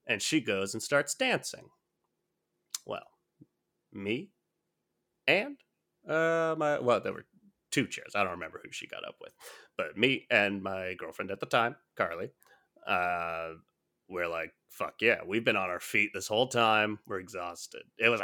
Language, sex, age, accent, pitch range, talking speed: English, male, 30-49, American, 110-180 Hz, 165 wpm